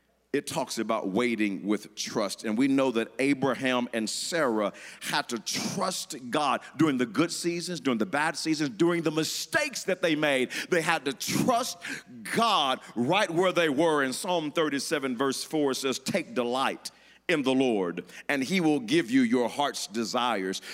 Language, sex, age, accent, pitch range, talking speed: English, male, 40-59, American, 130-180 Hz, 170 wpm